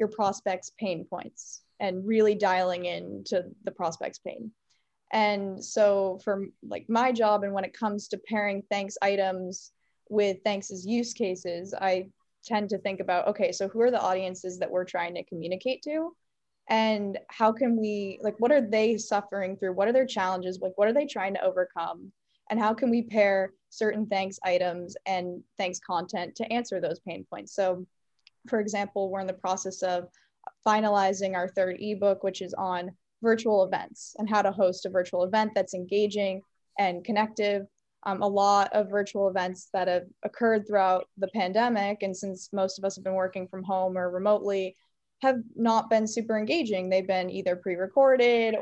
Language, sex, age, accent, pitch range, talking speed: English, female, 10-29, American, 190-215 Hz, 180 wpm